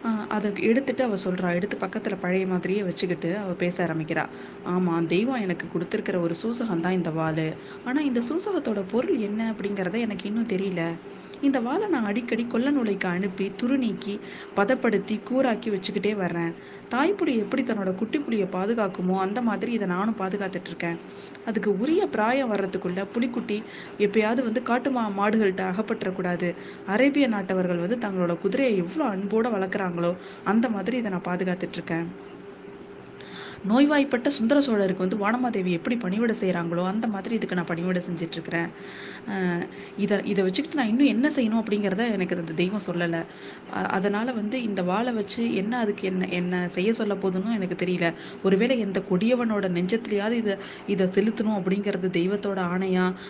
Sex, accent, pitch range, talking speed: female, native, 185-230 Hz, 140 wpm